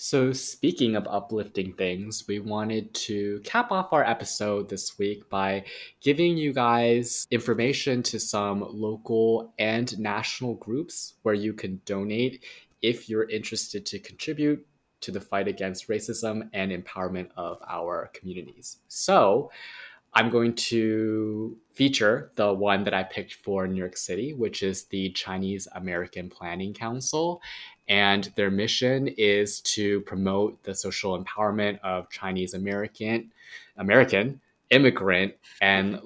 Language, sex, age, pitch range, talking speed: English, male, 20-39, 100-120 Hz, 135 wpm